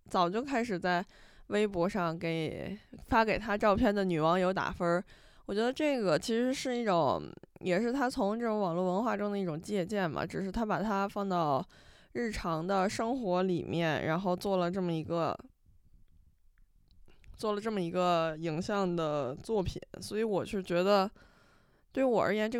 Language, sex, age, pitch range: Chinese, female, 20-39, 170-215 Hz